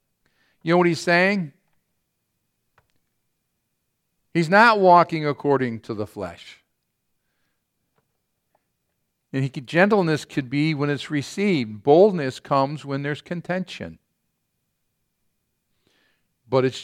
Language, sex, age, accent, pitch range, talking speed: English, male, 50-69, American, 135-170 Hz, 100 wpm